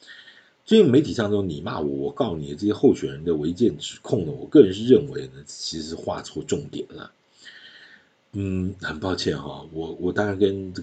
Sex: male